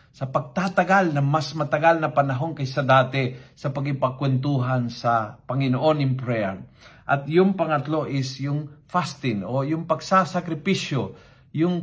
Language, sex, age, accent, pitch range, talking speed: Filipino, male, 50-69, native, 130-165 Hz, 130 wpm